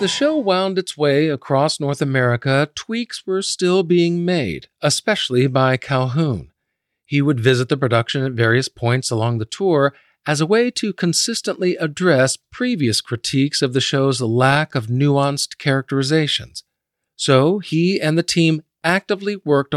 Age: 50-69